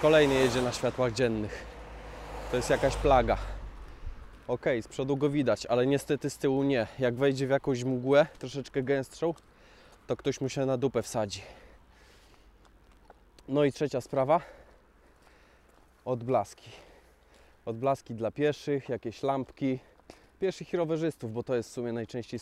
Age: 20-39